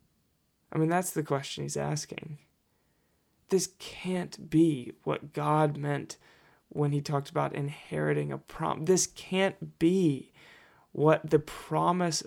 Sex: male